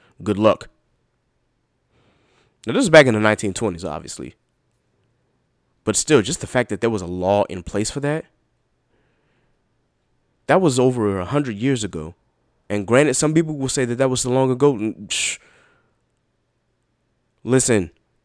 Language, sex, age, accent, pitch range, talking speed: English, male, 20-39, American, 100-125 Hz, 140 wpm